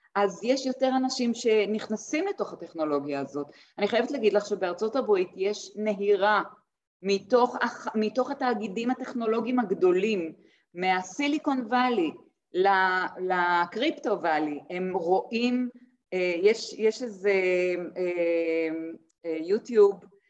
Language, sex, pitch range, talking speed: Hebrew, female, 185-235 Hz, 90 wpm